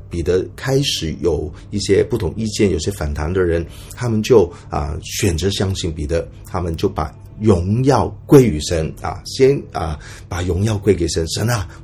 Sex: male